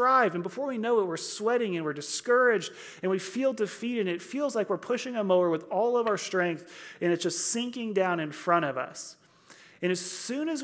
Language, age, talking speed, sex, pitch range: English, 30-49, 220 wpm, male, 150-205 Hz